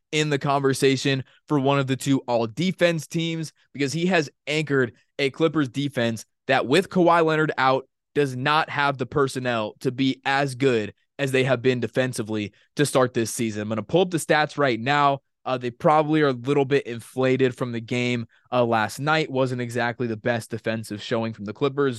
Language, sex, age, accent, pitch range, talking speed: English, male, 20-39, American, 125-165 Hz, 195 wpm